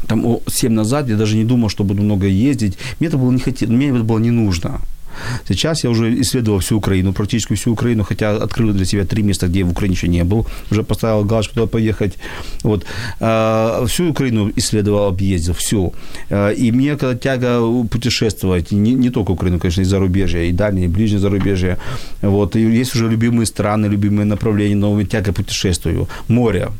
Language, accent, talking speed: Ukrainian, native, 185 wpm